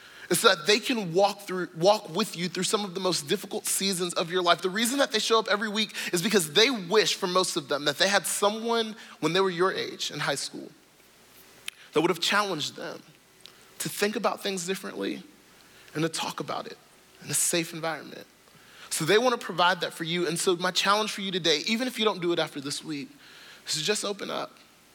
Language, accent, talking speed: English, American, 225 wpm